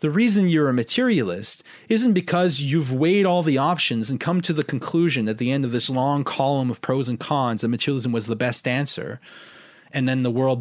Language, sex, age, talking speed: English, male, 30-49, 215 wpm